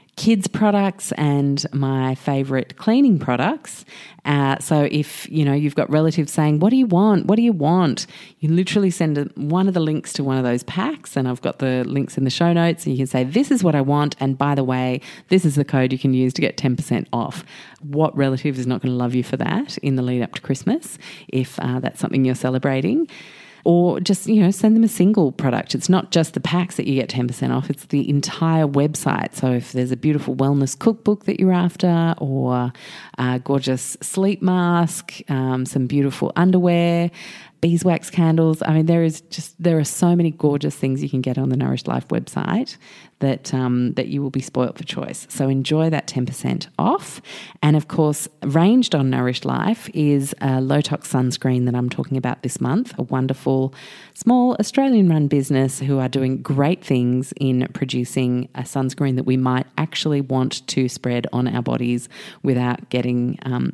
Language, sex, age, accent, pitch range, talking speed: English, female, 30-49, Australian, 130-175 Hz, 200 wpm